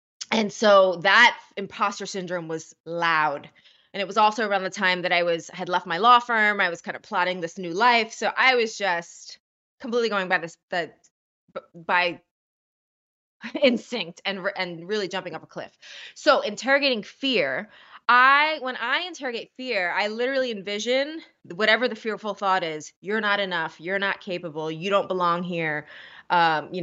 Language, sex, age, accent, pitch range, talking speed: English, female, 20-39, American, 175-220 Hz, 170 wpm